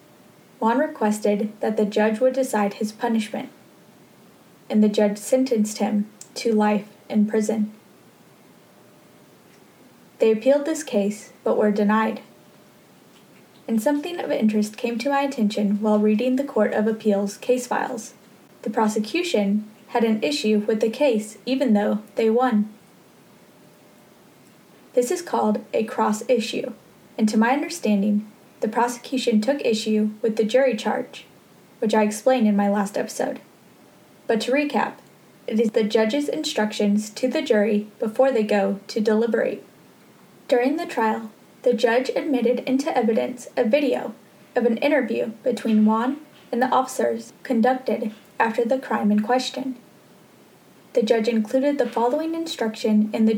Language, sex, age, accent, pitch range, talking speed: English, female, 10-29, American, 215-255 Hz, 140 wpm